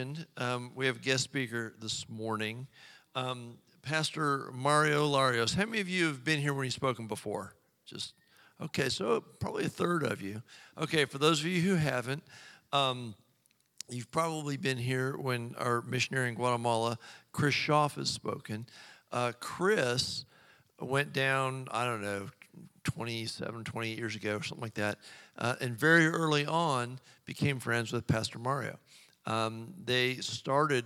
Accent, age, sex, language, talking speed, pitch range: American, 50-69, male, English, 155 wpm, 115-140 Hz